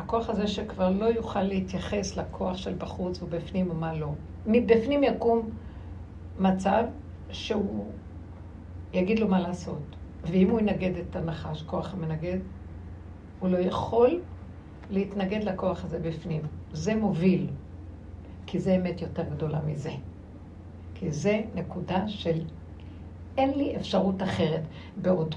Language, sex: Hebrew, female